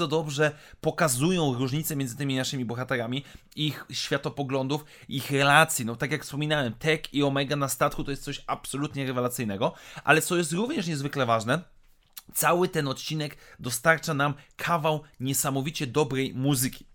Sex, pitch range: male, 135-165 Hz